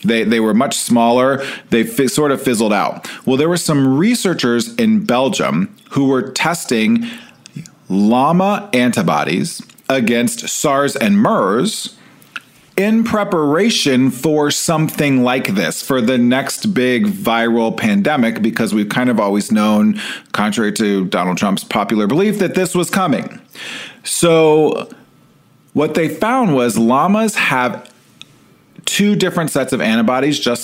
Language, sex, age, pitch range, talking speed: English, male, 40-59, 125-190 Hz, 135 wpm